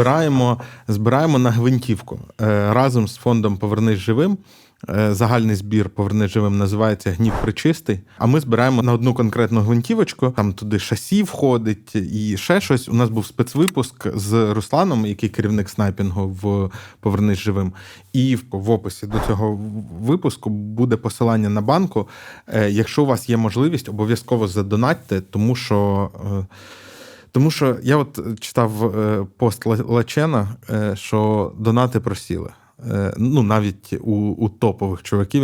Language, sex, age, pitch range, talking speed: Ukrainian, male, 20-39, 105-125 Hz, 130 wpm